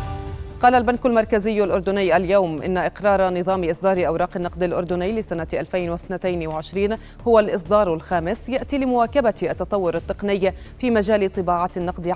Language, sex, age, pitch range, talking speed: Arabic, female, 30-49, 185-225 Hz, 125 wpm